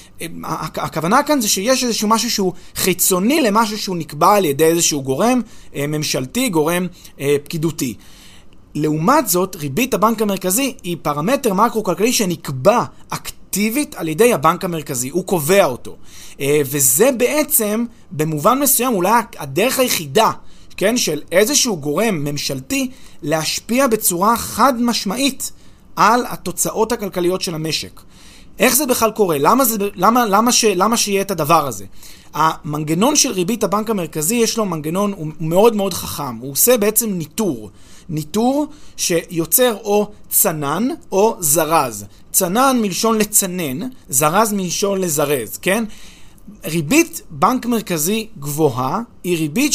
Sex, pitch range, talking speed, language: male, 155-230 Hz, 125 wpm, Hebrew